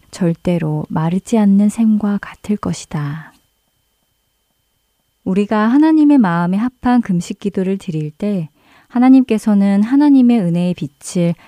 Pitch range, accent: 165-215 Hz, native